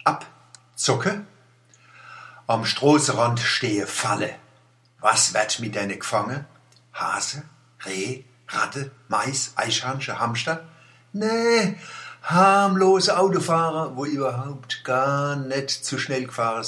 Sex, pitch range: male, 105-140 Hz